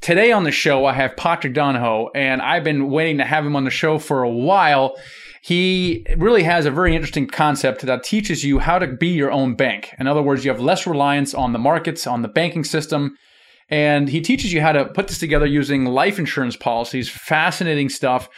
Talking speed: 215 wpm